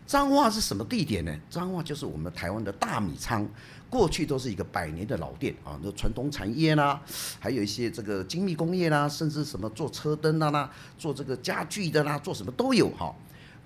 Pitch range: 105-165 Hz